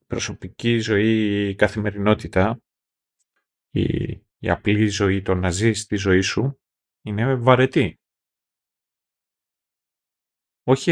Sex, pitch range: male, 105-145 Hz